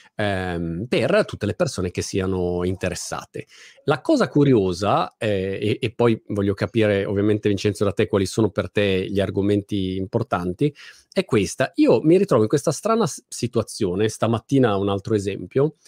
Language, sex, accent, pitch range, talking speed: Italian, male, native, 105-135 Hz, 150 wpm